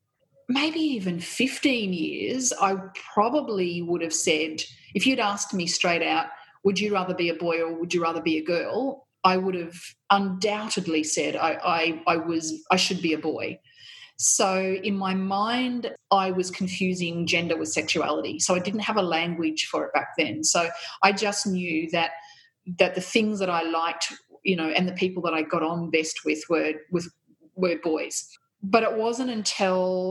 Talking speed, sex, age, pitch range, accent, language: 185 wpm, female, 30-49, 165-200 Hz, Australian, English